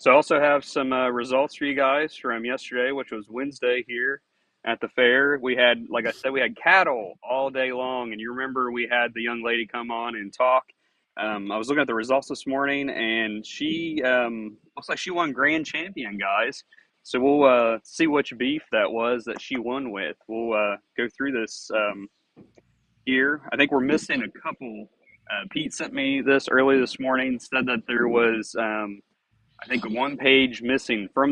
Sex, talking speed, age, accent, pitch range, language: male, 200 wpm, 30-49, American, 115-135 Hz, English